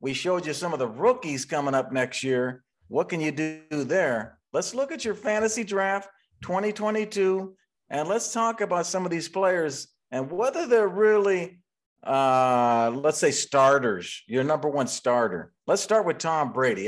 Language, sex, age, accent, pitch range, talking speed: English, male, 50-69, American, 150-215 Hz, 170 wpm